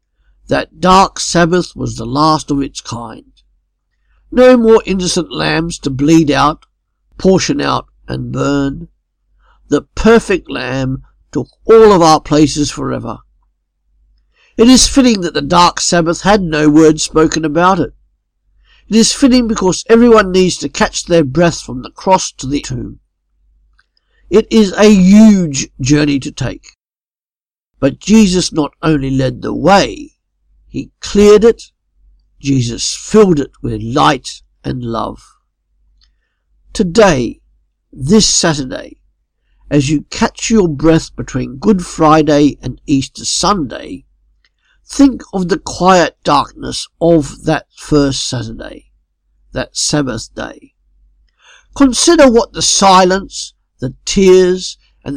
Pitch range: 130-190 Hz